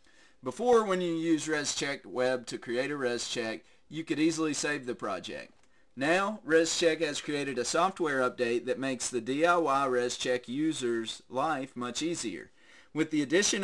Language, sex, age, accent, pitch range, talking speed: English, male, 30-49, American, 125-160 Hz, 155 wpm